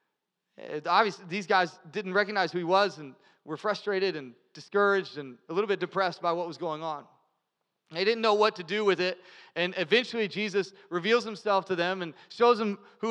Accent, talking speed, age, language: American, 195 wpm, 30-49, English